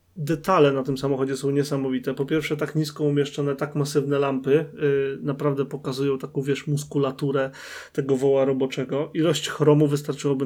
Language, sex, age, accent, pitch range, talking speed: Polish, male, 20-39, native, 140-150 Hz, 140 wpm